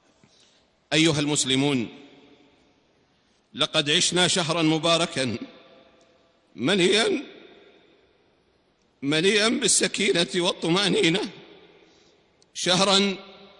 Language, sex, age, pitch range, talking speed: Arabic, male, 50-69, 170-200 Hz, 50 wpm